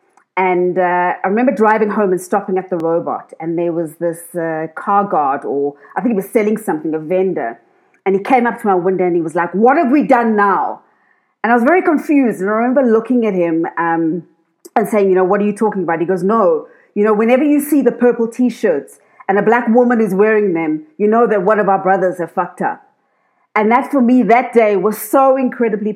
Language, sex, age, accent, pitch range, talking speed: English, female, 30-49, South African, 175-220 Hz, 235 wpm